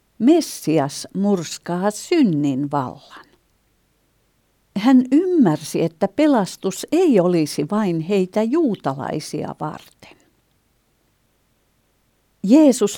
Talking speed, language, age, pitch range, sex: 70 wpm, Finnish, 60-79, 150-200 Hz, female